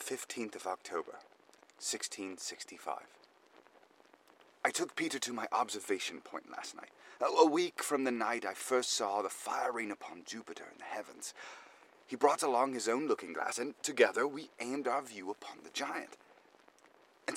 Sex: male